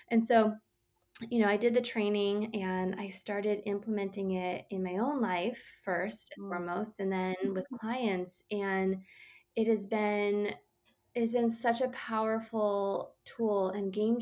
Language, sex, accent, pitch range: English, female, American, 190-225 Hz